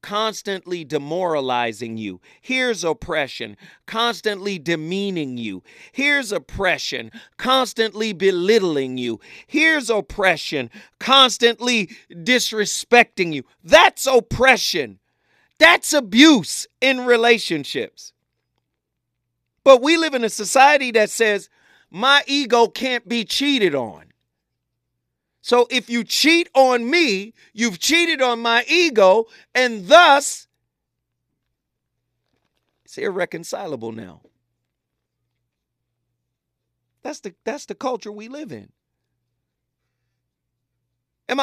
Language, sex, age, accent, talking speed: English, male, 40-59, American, 90 wpm